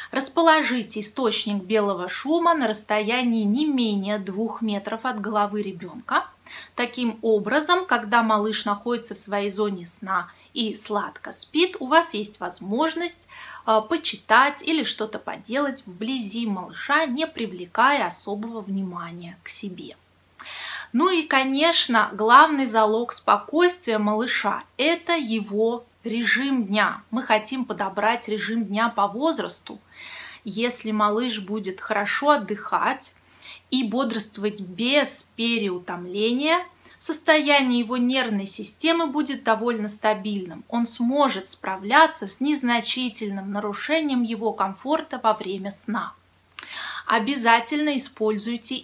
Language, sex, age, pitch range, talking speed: Russian, female, 20-39, 210-275 Hz, 110 wpm